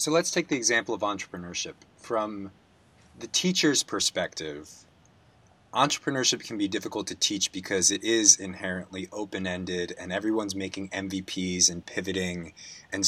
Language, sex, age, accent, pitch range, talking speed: English, male, 20-39, American, 95-130 Hz, 135 wpm